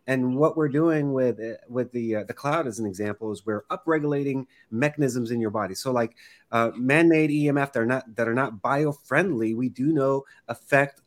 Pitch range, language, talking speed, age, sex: 120-150 Hz, English, 190 wpm, 30-49, male